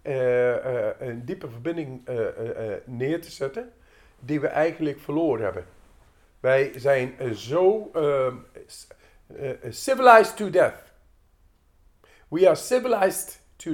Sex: male